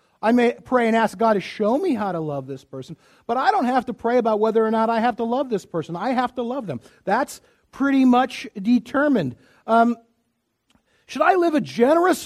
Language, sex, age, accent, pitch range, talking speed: English, male, 50-69, American, 195-245 Hz, 220 wpm